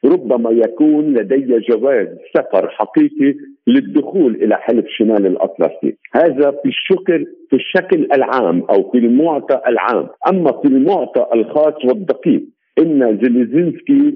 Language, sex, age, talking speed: Arabic, male, 50-69, 120 wpm